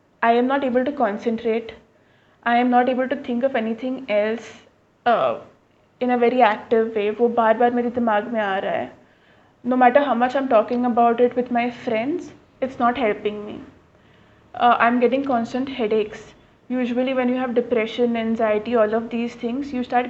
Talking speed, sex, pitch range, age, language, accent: 185 wpm, female, 225-250 Hz, 20-39, Hindi, native